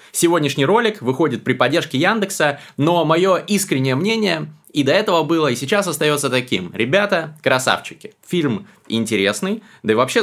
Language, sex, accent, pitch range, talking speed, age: Russian, male, native, 120-160 Hz, 145 wpm, 20-39